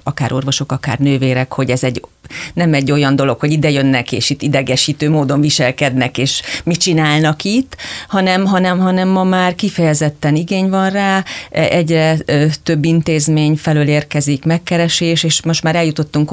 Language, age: Hungarian, 40-59